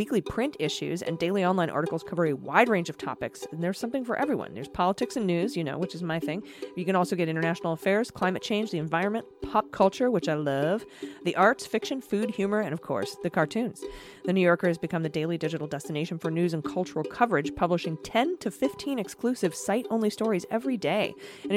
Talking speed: 215 wpm